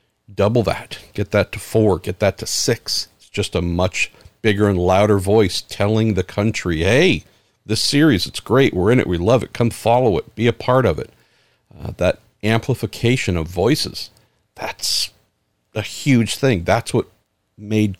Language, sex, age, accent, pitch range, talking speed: English, male, 50-69, American, 100-115 Hz, 175 wpm